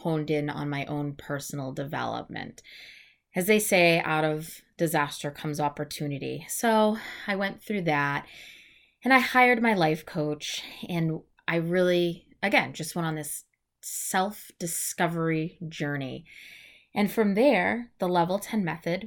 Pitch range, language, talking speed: 150-185 Hz, English, 135 wpm